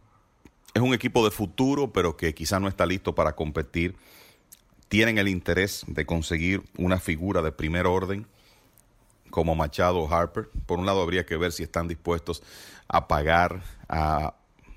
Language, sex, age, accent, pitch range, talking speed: English, male, 40-59, Venezuelan, 80-100 Hz, 160 wpm